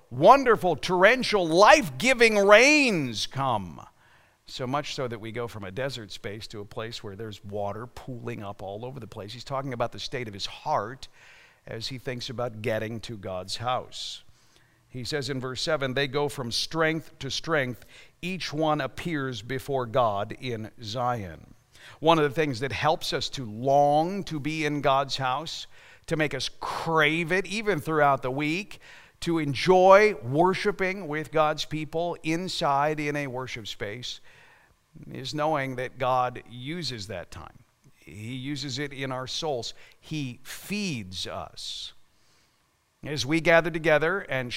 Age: 50-69